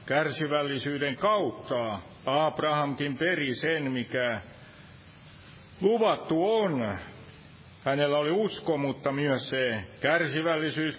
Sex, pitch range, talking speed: male, 125-150 Hz, 80 wpm